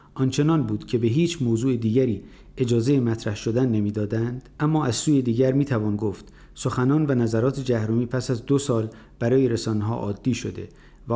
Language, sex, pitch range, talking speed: Persian, male, 110-145 Hz, 165 wpm